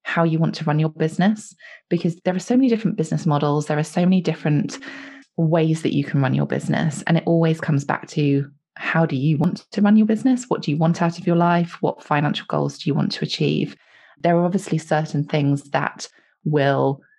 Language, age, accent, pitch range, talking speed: English, 20-39, British, 140-175 Hz, 225 wpm